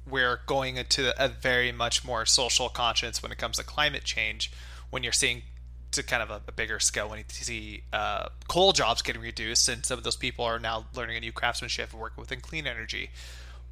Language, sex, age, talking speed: English, male, 20-39, 215 wpm